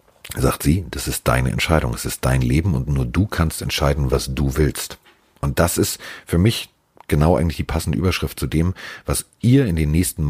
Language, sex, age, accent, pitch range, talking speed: German, male, 40-59, German, 70-90 Hz, 205 wpm